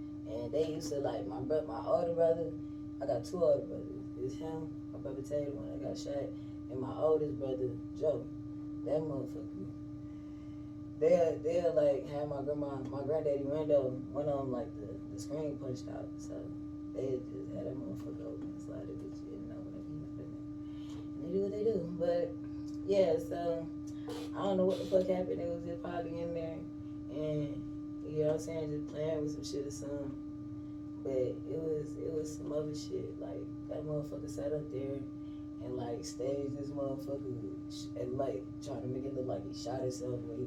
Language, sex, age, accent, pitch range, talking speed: English, female, 10-29, American, 100-150 Hz, 190 wpm